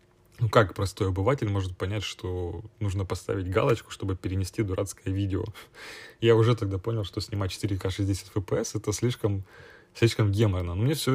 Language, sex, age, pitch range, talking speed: Ukrainian, male, 20-39, 100-115 Hz, 155 wpm